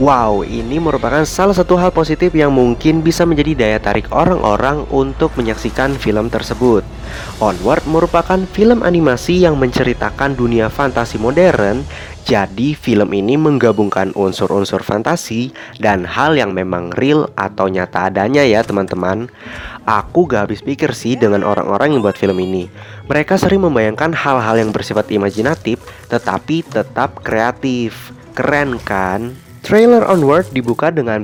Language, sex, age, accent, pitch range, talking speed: Indonesian, male, 20-39, native, 105-155 Hz, 135 wpm